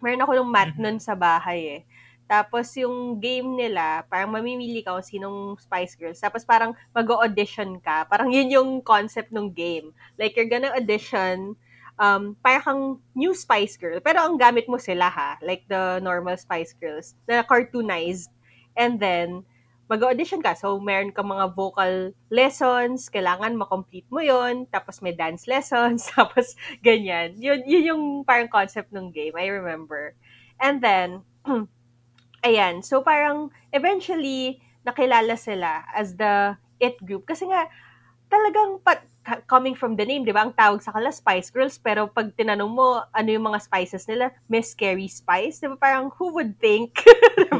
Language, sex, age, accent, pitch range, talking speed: Filipino, female, 20-39, native, 185-255 Hz, 160 wpm